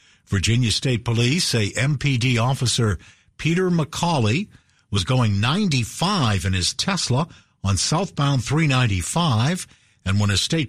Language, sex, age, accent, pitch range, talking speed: English, male, 50-69, American, 105-150 Hz, 120 wpm